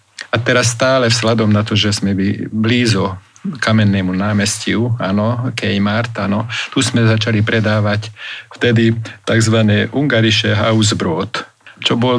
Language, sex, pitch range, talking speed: Slovak, male, 100-115 Hz, 115 wpm